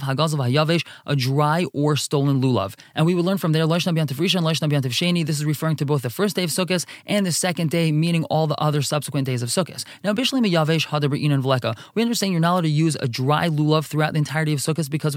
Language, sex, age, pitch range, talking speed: English, male, 20-39, 145-180 Hz, 245 wpm